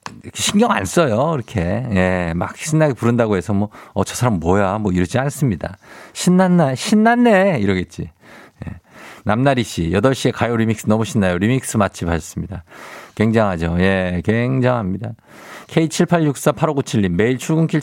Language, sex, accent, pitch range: Korean, male, native, 100-145 Hz